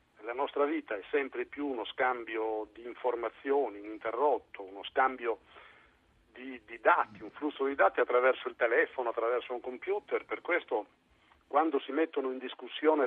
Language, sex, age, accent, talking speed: Italian, male, 50-69, native, 150 wpm